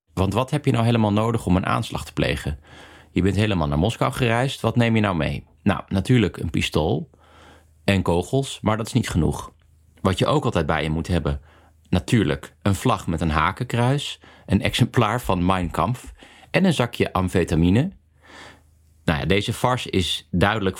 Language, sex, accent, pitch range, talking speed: Dutch, male, Dutch, 85-115 Hz, 180 wpm